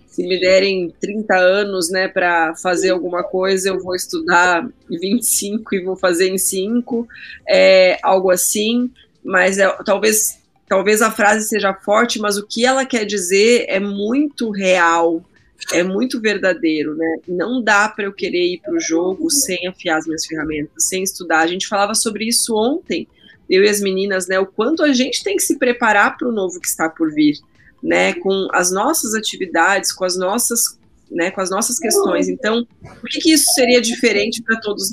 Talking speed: 175 wpm